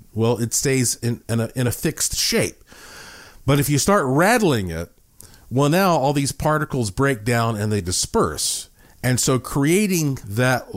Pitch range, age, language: 100-135 Hz, 50-69, English